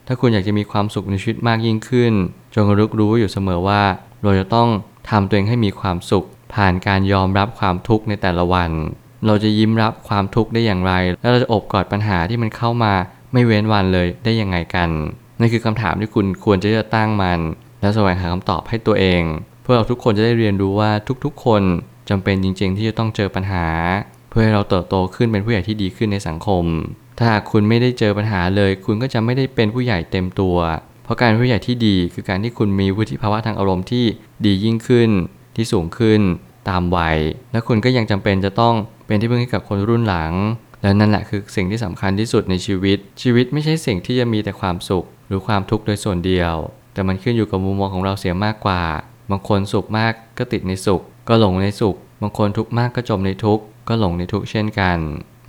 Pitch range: 95-115 Hz